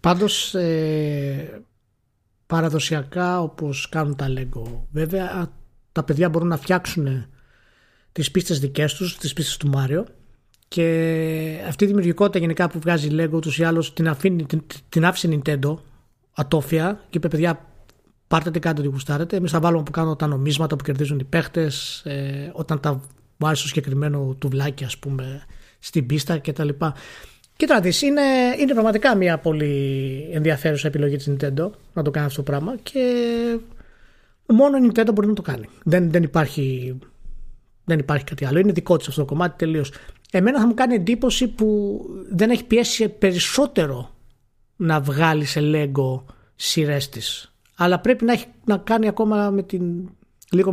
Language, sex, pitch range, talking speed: Greek, male, 145-185 Hz, 150 wpm